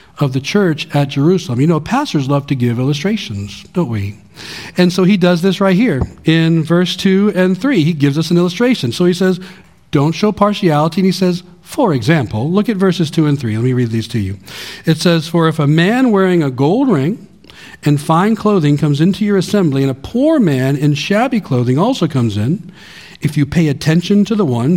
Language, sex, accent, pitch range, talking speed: English, male, American, 135-185 Hz, 215 wpm